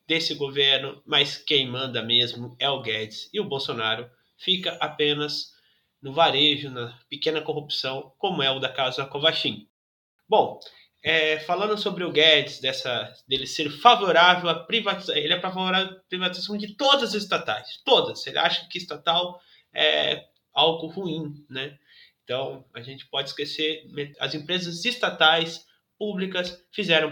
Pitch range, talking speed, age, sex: 135-185 Hz, 145 wpm, 20-39, male